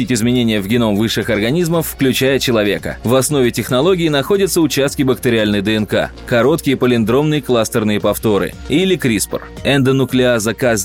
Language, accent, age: Russian, native, 20-39